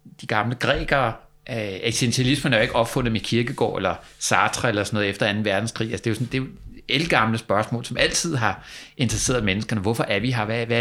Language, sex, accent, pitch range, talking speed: Danish, male, native, 110-150 Hz, 220 wpm